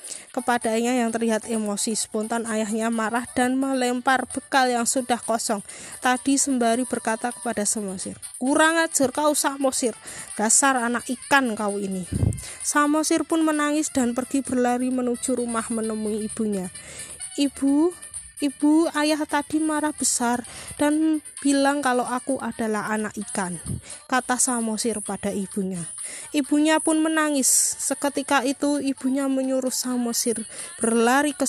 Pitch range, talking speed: 225-285 Hz, 120 wpm